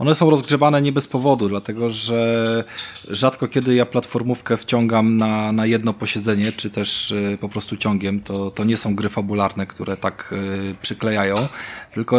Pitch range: 100-115 Hz